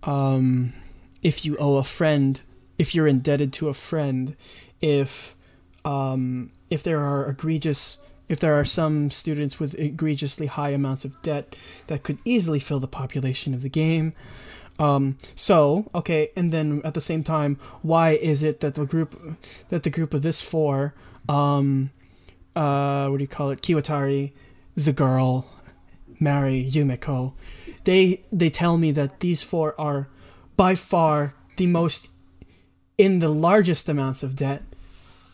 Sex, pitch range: male, 135-180 Hz